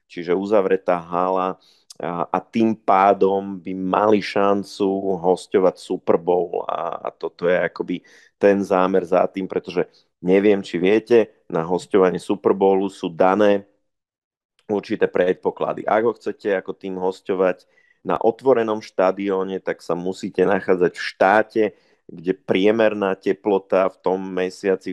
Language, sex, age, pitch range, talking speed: Slovak, male, 30-49, 90-105 Hz, 130 wpm